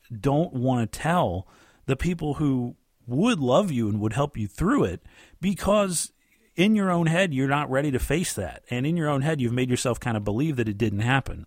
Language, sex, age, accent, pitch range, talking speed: English, male, 40-59, American, 110-145 Hz, 220 wpm